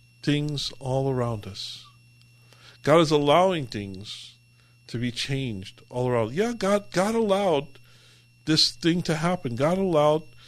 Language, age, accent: English, 50-69, American